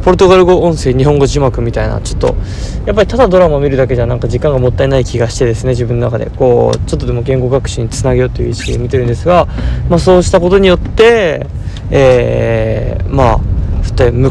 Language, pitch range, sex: Japanese, 110-135 Hz, male